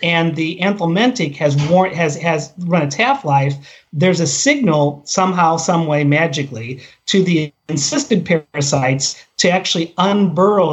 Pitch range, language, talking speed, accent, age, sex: 150-190 Hz, English, 135 wpm, American, 40-59, male